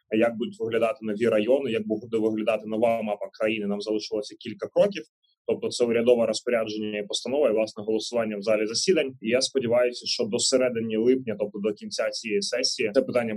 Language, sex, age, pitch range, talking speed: Ukrainian, male, 20-39, 110-135 Hz, 185 wpm